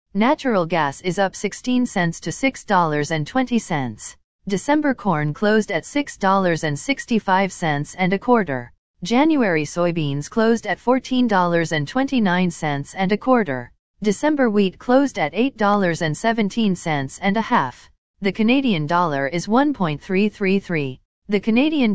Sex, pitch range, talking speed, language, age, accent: female, 165-230 Hz, 105 wpm, English, 40-59, American